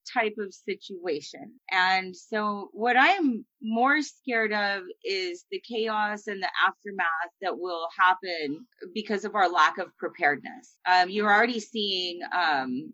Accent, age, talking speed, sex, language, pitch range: American, 30-49, 140 wpm, female, English, 190-250 Hz